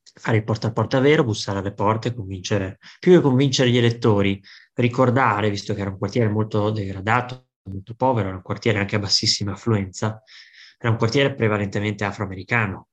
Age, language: 20-39, Italian